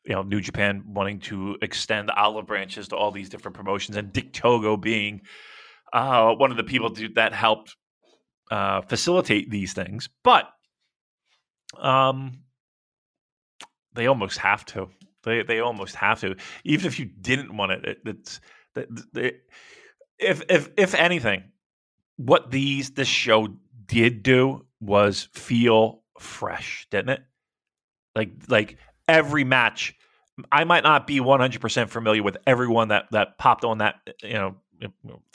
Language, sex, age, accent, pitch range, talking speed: English, male, 30-49, American, 110-155 Hz, 140 wpm